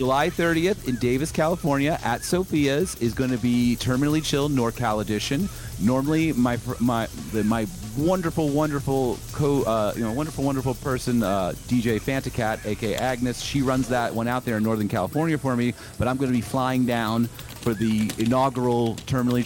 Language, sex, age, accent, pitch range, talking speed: English, male, 30-49, American, 110-130 Hz, 170 wpm